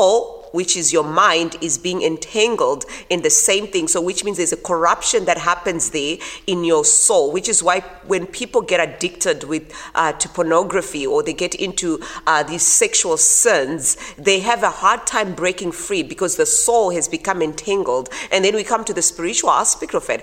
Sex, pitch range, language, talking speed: female, 170-225 Hz, English, 195 wpm